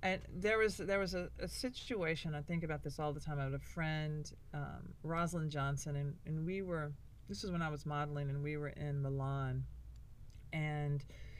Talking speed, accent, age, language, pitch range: 200 wpm, American, 40-59, English, 145-175 Hz